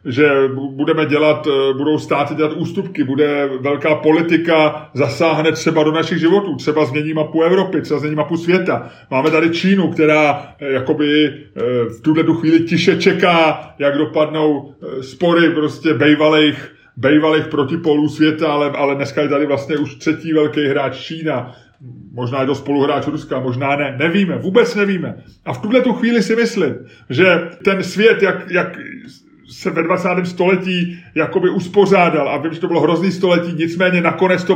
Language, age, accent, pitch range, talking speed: Czech, 30-49, native, 150-185 Hz, 150 wpm